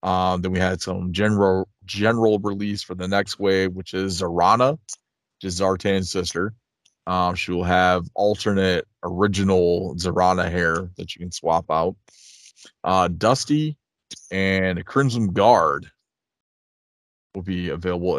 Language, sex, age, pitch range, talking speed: English, male, 20-39, 90-100 Hz, 130 wpm